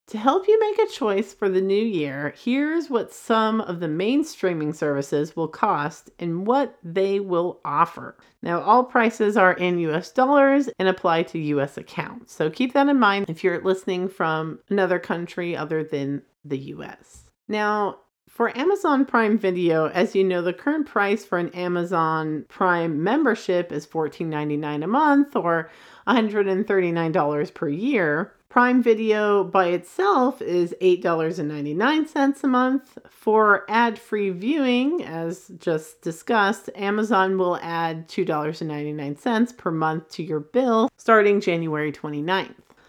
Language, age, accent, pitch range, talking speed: English, 40-59, American, 170-230 Hz, 145 wpm